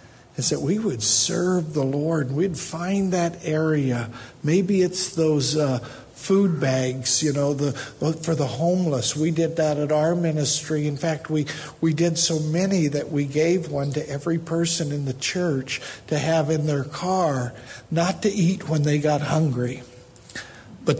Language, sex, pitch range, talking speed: English, male, 150-185 Hz, 165 wpm